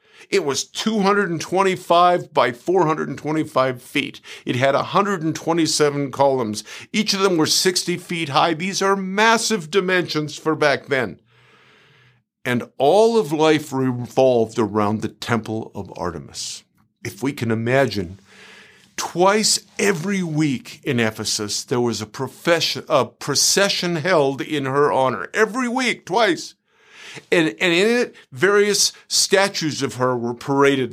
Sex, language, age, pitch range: male, English, 50-69, 130-195 Hz